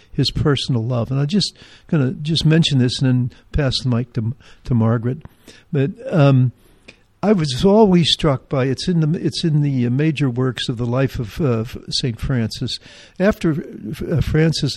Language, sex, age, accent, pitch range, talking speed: English, male, 60-79, American, 120-150 Hz, 180 wpm